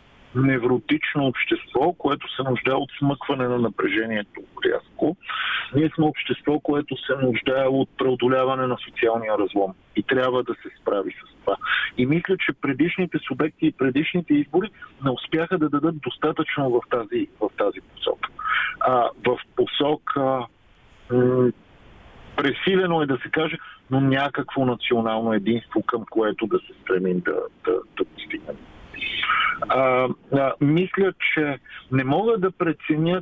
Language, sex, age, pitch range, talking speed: Bulgarian, male, 50-69, 130-170 Hz, 135 wpm